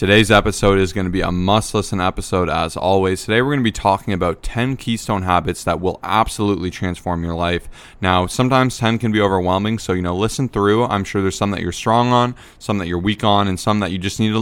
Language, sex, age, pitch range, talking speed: English, male, 20-39, 90-110 Hz, 245 wpm